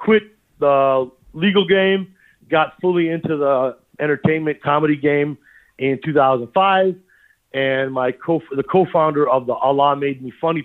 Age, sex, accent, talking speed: 40-59, male, American, 135 wpm